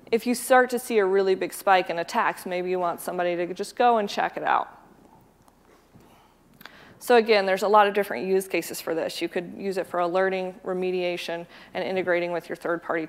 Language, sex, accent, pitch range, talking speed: English, female, American, 185-220 Hz, 205 wpm